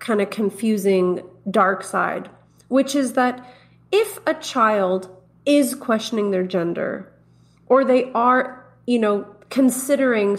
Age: 30-49